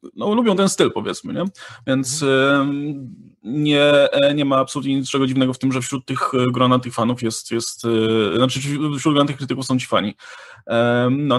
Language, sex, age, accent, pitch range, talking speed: Polish, male, 20-39, native, 120-185 Hz, 175 wpm